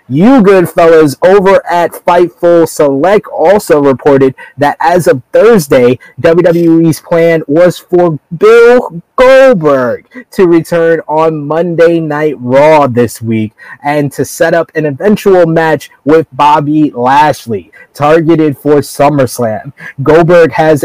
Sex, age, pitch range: male, 20-39, 135-165 Hz